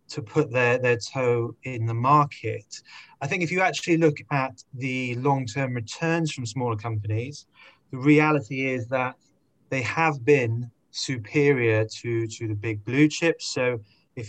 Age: 20-39